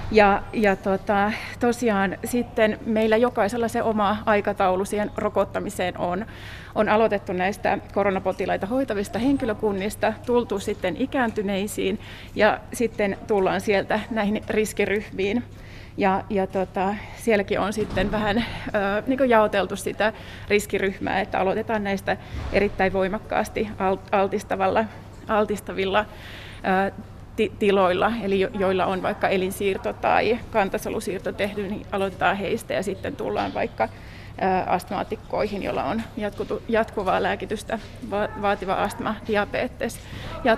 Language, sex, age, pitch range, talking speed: Finnish, female, 30-49, 195-220 Hz, 110 wpm